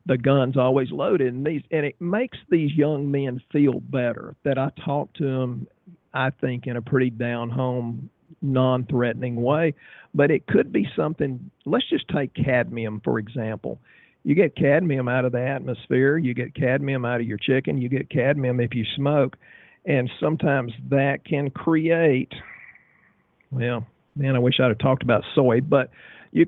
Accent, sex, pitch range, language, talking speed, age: American, male, 120-135 Hz, English, 165 wpm, 50-69